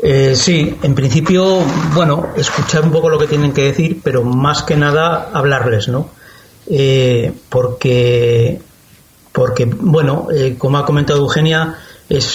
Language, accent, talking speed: Spanish, Spanish, 140 wpm